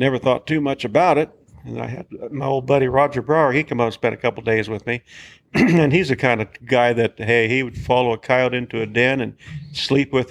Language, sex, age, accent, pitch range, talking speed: English, male, 50-69, American, 120-140 Hz, 255 wpm